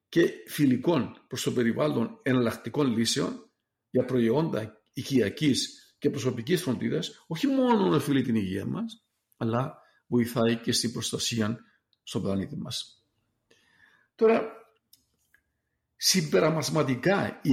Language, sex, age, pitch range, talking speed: Greek, male, 50-69, 115-145 Hz, 105 wpm